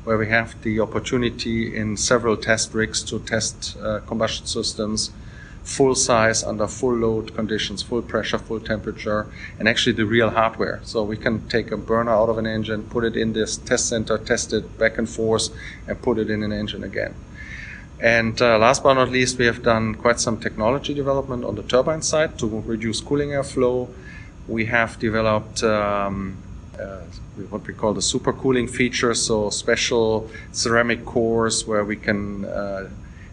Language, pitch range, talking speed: English, 105-120 Hz, 175 wpm